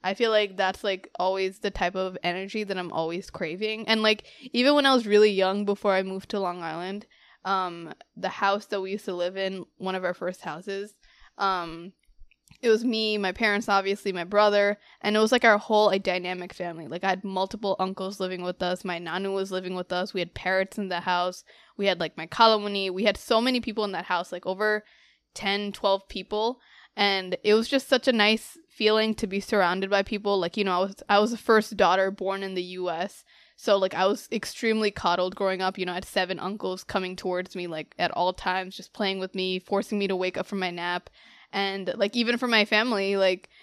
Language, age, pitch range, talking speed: English, 20-39, 185-210 Hz, 225 wpm